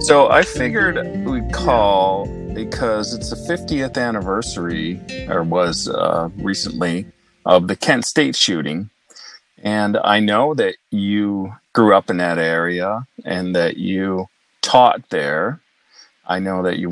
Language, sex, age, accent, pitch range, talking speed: English, male, 40-59, American, 90-110 Hz, 135 wpm